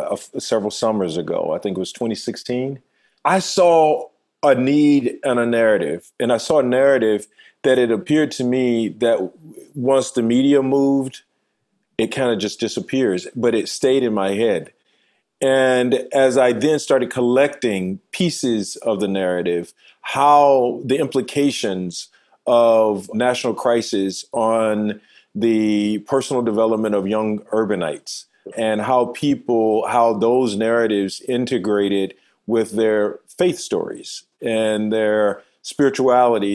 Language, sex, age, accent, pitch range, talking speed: English, male, 40-59, American, 105-135 Hz, 130 wpm